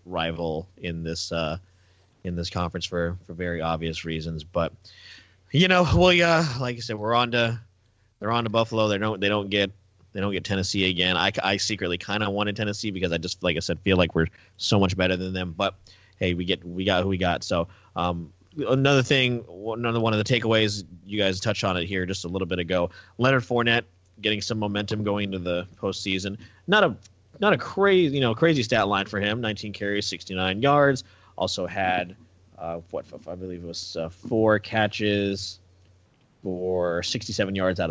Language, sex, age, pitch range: English, male, 30-49, 90-110 Hz